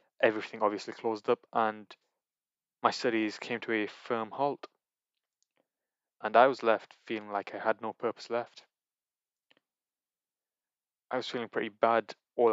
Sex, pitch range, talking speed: male, 110-130 Hz, 140 wpm